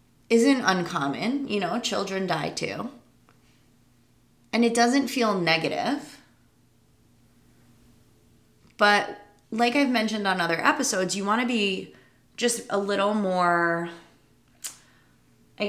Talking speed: 105 wpm